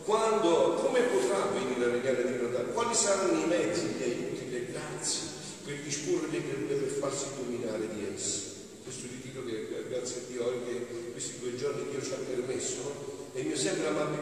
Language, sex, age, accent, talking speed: Italian, male, 50-69, native, 180 wpm